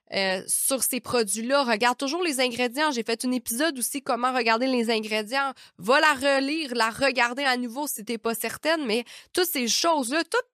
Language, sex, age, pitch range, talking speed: French, female, 20-39, 225-280 Hz, 190 wpm